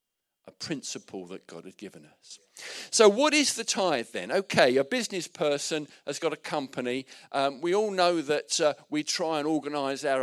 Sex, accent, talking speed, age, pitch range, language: male, British, 180 wpm, 50-69, 140-200 Hz, English